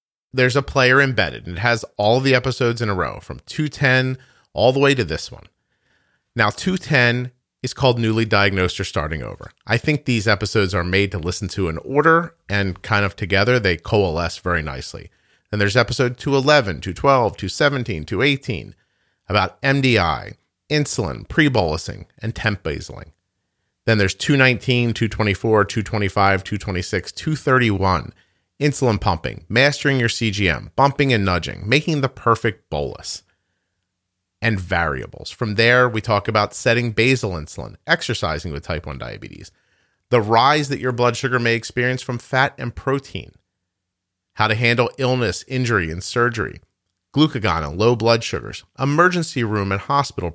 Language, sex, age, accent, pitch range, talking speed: English, male, 40-59, American, 95-125 Hz, 150 wpm